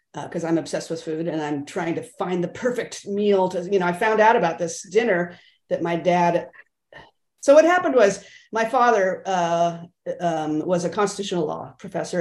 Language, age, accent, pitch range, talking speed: English, 40-59, American, 170-225 Hz, 190 wpm